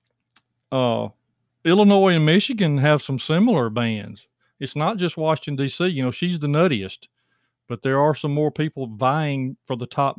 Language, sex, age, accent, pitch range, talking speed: English, male, 40-59, American, 120-155 Hz, 165 wpm